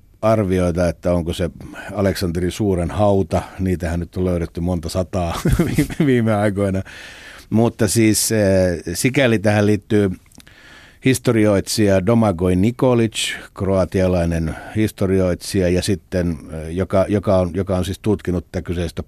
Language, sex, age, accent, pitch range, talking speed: Finnish, male, 60-79, native, 85-105 Hz, 110 wpm